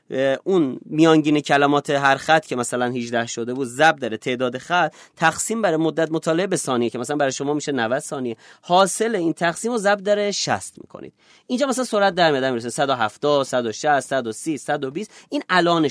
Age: 30-49